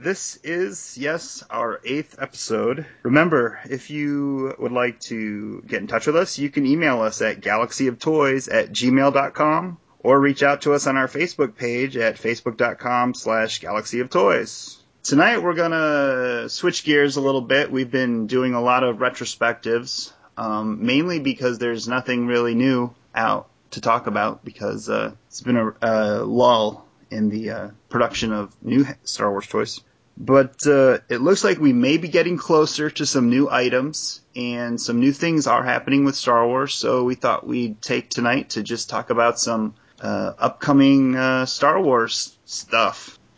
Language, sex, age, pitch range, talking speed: English, male, 30-49, 120-145 Hz, 165 wpm